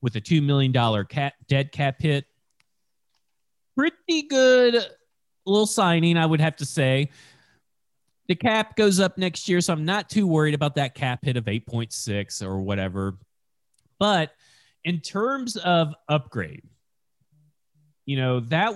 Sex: male